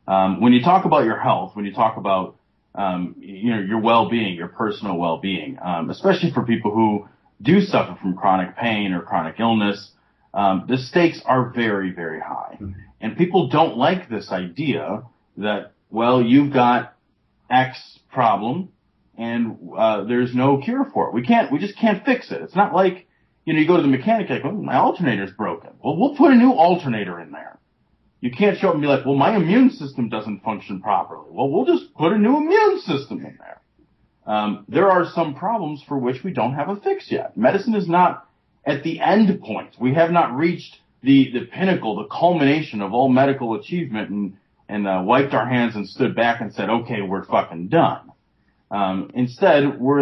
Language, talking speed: English, 195 wpm